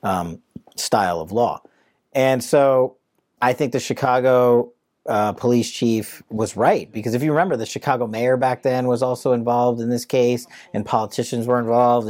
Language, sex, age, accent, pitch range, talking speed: English, male, 40-59, American, 110-130 Hz, 170 wpm